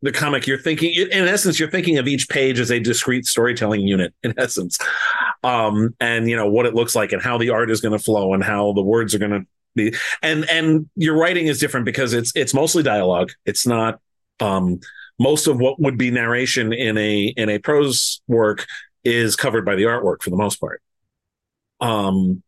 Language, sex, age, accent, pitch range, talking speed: English, male, 40-59, American, 105-145 Hz, 210 wpm